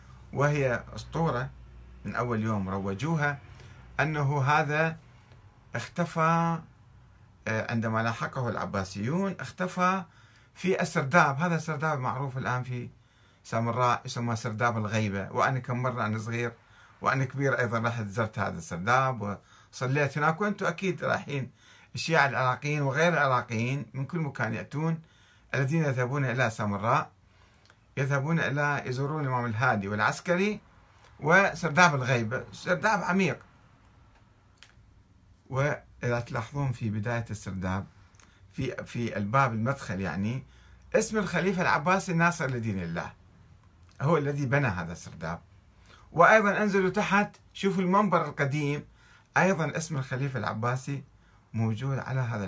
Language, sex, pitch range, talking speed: Arabic, male, 105-145 Hz, 110 wpm